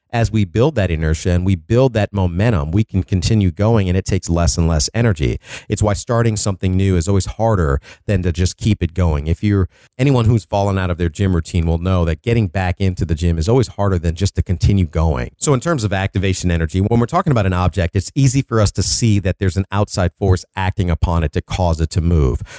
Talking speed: 245 wpm